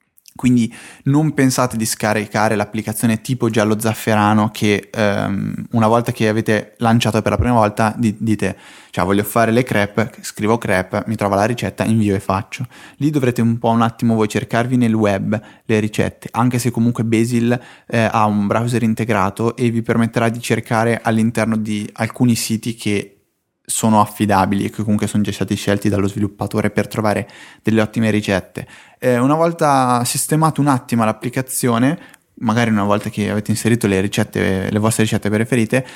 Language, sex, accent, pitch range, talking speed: Italian, male, native, 105-120 Hz, 170 wpm